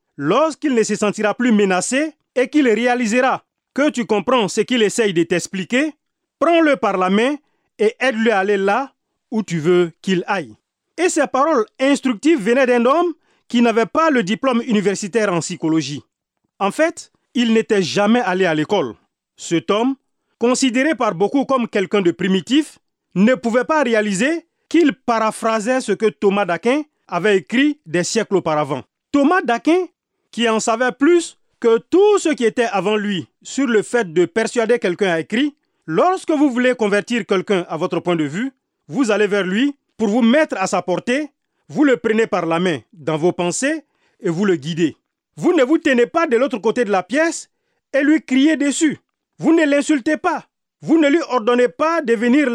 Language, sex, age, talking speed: French, male, 40-59, 180 wpm